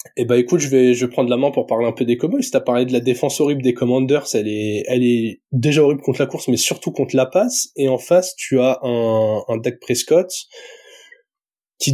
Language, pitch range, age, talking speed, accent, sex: French, 125-170 Hz, 20-39, 245 wpm, French, male